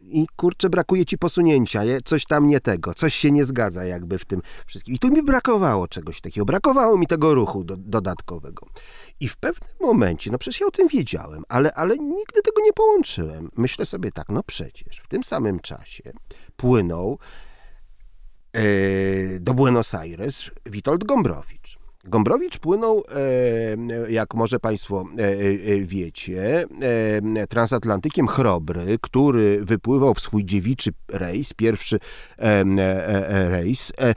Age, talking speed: 40-59, 130 wpm